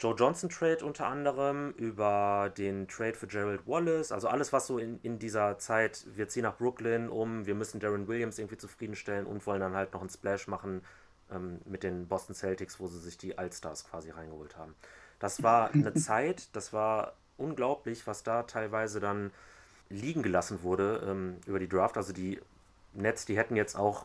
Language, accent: German, German